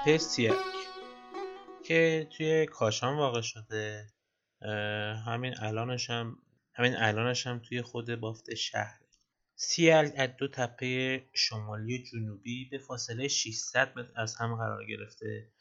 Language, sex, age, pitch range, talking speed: Persian, male, 30-49, 115-155 Hz, 110 wpm